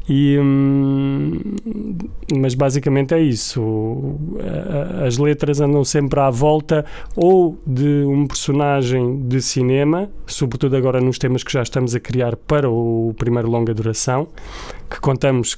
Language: Portuguese